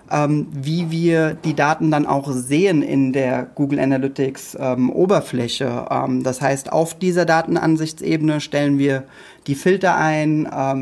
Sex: male